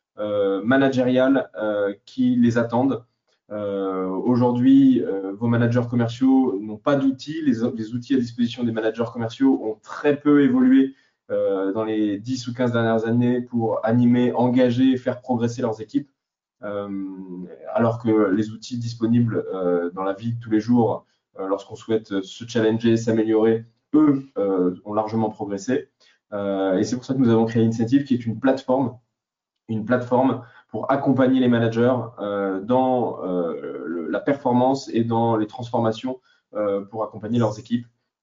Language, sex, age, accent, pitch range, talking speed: French, male, 20-39, French, 105-125 Hz, 155 wpm